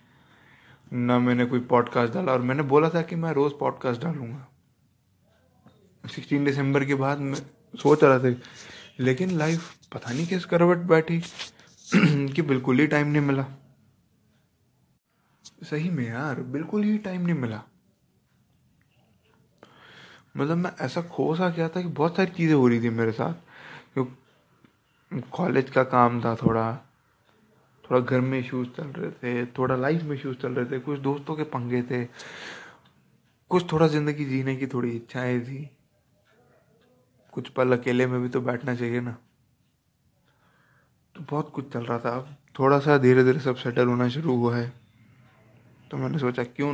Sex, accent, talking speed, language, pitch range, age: male, Indian, 150 wpm, English, 120-150 Hz, 20-39